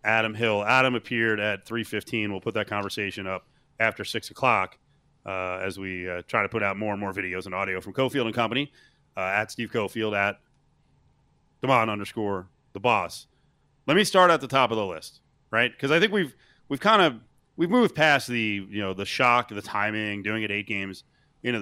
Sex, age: male, 30-49